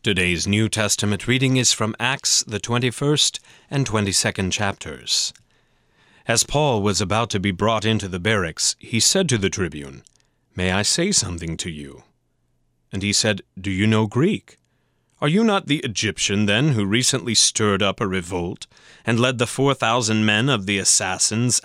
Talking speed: 170 wpm